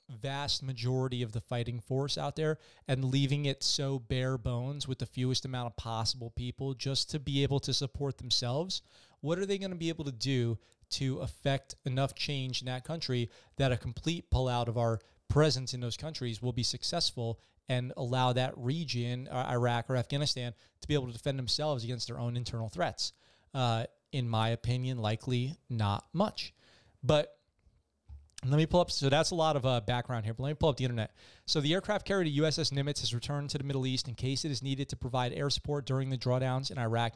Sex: male